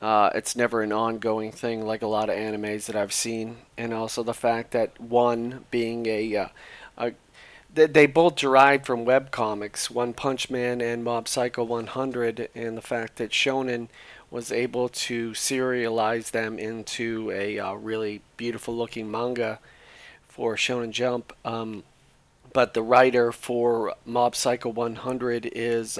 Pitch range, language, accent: 110-125 Hz, English, American